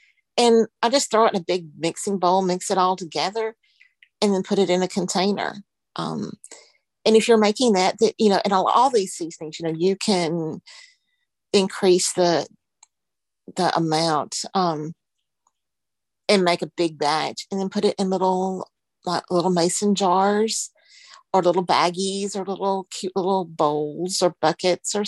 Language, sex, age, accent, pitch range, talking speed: English, female, 40-59, American, 170-210 Hz, 165 wpm